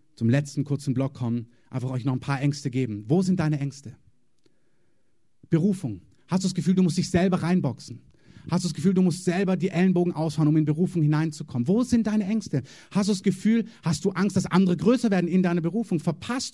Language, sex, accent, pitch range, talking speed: German, male, German, 135-185 Hz, 215 wpm